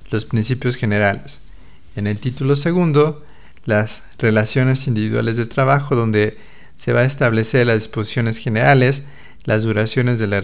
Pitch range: 110-130 Hz